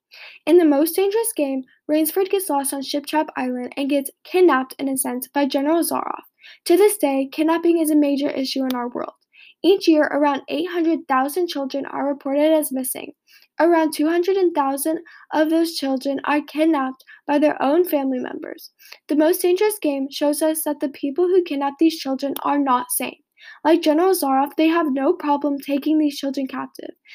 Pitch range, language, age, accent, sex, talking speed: 280-325 Hz, English, 10-29, American, female, 175 wpm